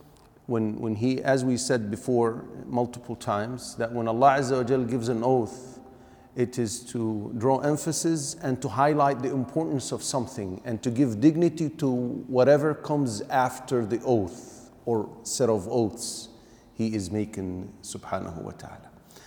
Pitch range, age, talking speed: 115-140 Hz, 40-59, 145 wpm